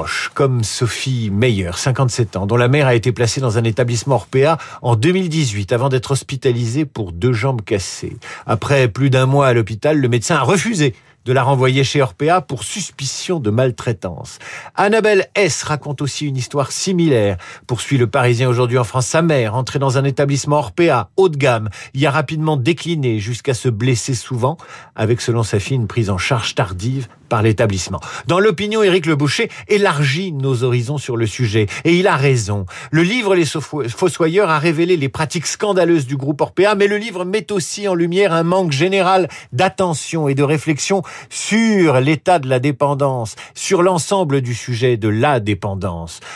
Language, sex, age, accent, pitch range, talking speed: French, male, 50-69, French, 120-170 Hz, 175 wpm